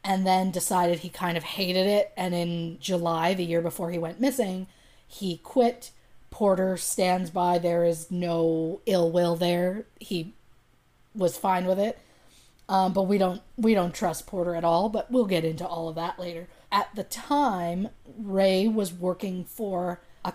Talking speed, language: 170 wpm, English